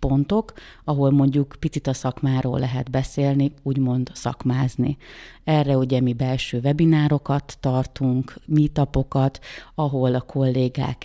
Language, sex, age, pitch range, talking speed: Hungarian, female, 30-49, 130-150 Hz, 110 wpm